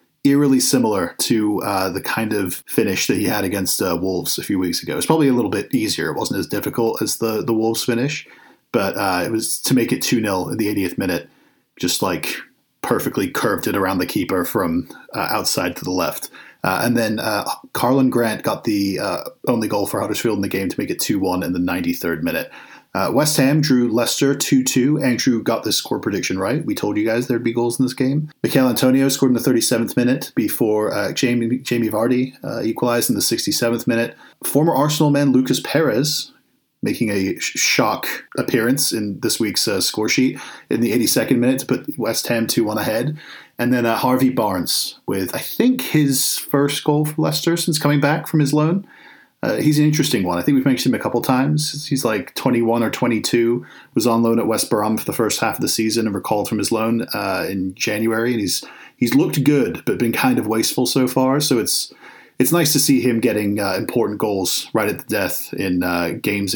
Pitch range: 110-140 Hz